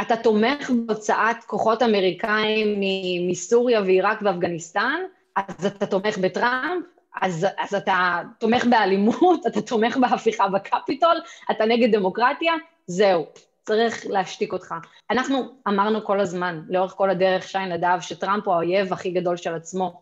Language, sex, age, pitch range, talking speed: Hebrew, female, 30-49, 190-230 Hz, 135 wpm